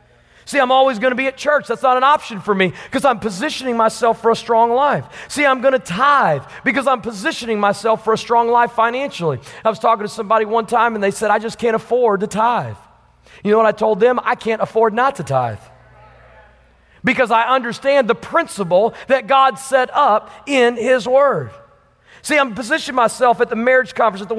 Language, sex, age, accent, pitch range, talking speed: English, male, 40-59, American, 160-245 Hz, 210 wpm